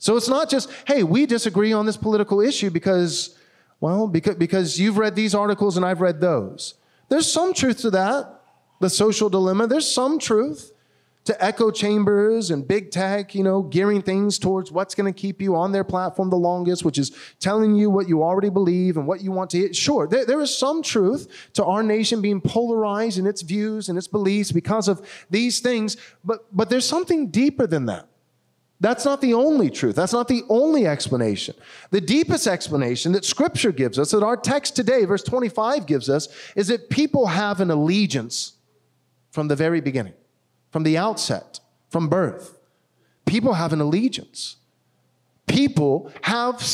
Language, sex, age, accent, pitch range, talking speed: English, male, 30-49, American, 180-230 Hz, 180 wpm